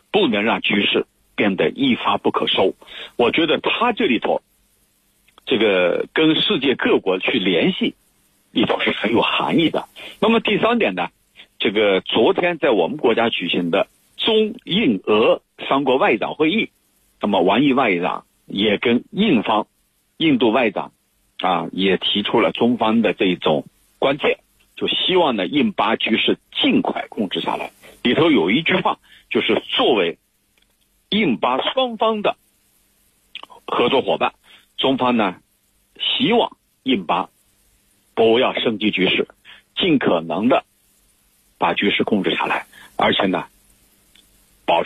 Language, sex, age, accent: Chinese, male, 50-69, native